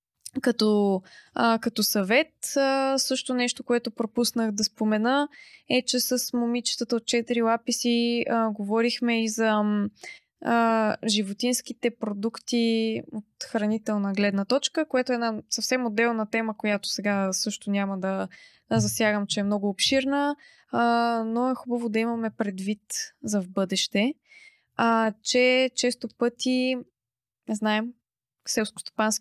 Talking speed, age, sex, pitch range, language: 125 wpm, 20-39, female, 205-240 Hz, Bulgarian